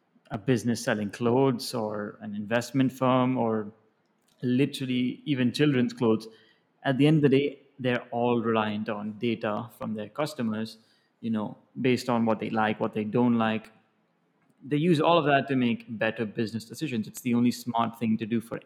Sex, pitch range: male, 110-140 Hz